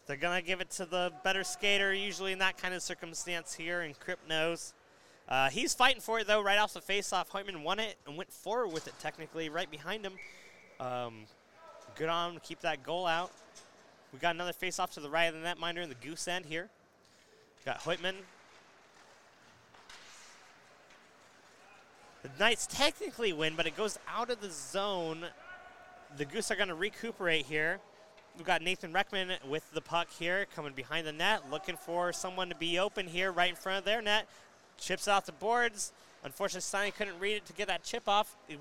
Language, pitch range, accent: English, 170-210 Hz, American